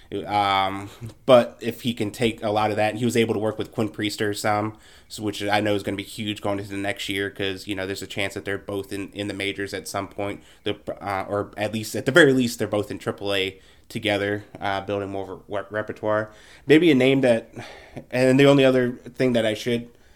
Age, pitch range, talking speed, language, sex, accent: 20-39, 100-120 Hz, 245 wpm, English, male, American